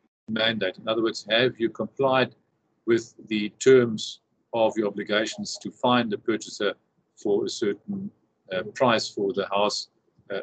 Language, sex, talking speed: English, male, 150 wpm